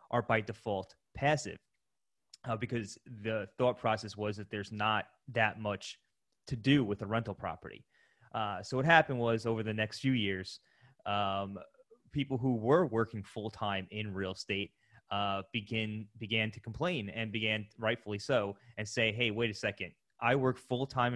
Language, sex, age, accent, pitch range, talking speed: English, male, 20-39, American, 105-125 Hz, 165 wpm